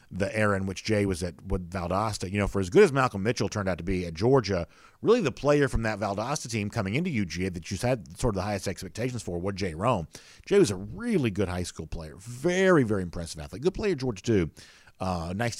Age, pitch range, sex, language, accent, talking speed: 50-69, 90-115 Hz, male, English, American, 240 wpm